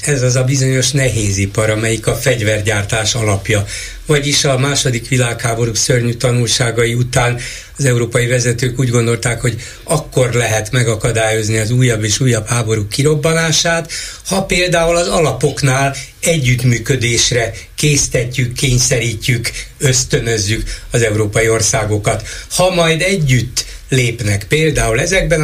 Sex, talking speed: male, 115 wpm